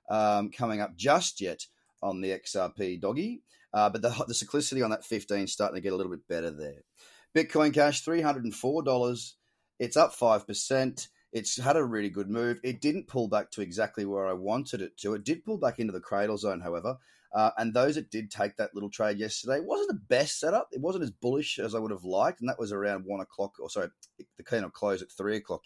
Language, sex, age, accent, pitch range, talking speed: English, male, 30-49, Australian, 100-125 Hz, 225 wpm